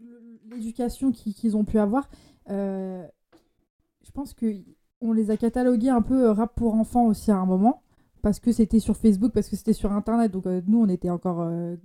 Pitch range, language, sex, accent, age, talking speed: 200-235 Hz, French, female, French, 20-39, 180 wpm